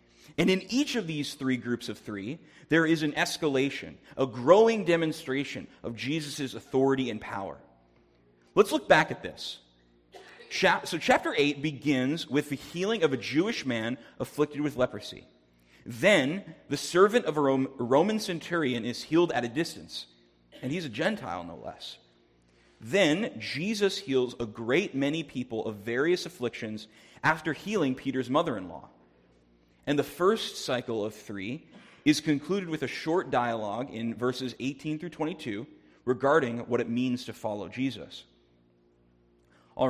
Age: 30-49